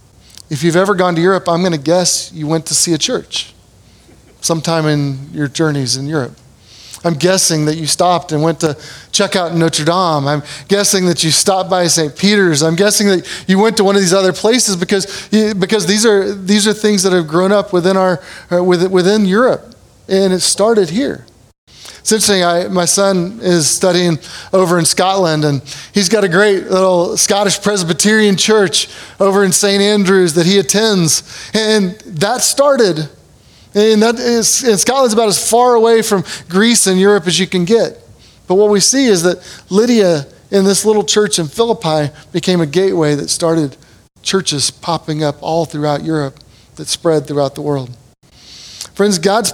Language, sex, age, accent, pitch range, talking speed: English, male, 30-49, American, 160-200 Hz, 180 wpm